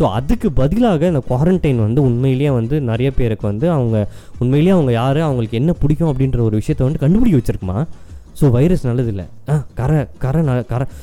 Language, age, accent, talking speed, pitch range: Tamil, 20-39, native, 160 wpm, 115-155 Hz